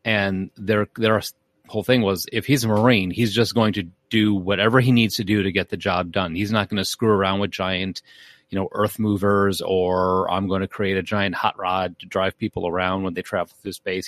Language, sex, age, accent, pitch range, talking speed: English, male, 30-49, American, 90-110 Hz, 235 wpm